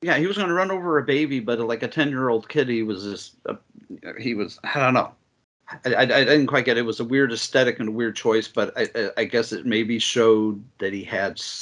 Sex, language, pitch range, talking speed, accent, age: male, English, 110-140 Hz, 255 wpm, American, 40-59